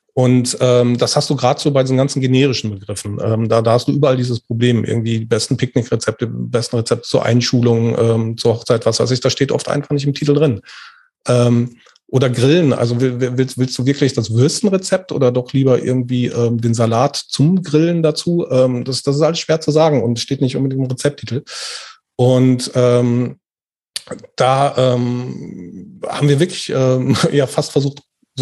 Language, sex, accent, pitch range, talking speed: German, male, German, 120-145 Hz, 190 wpm